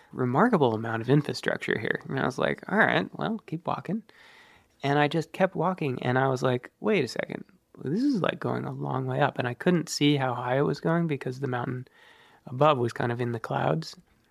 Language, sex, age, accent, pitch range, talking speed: English, male, 20-39, American, 130-170 Hz, 220 wpm